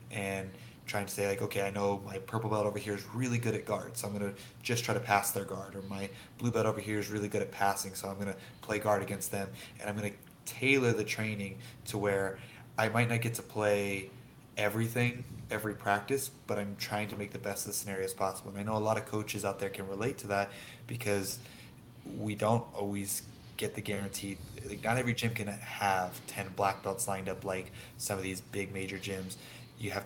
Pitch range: 100-115 Hz